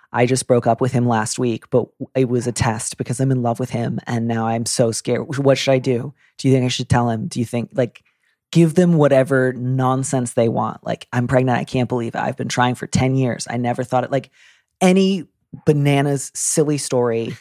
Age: 30-49